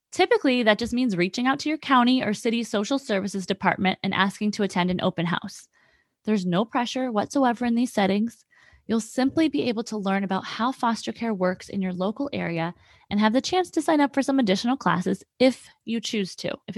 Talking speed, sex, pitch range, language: 210 wpm, female, 195-255 Hz, English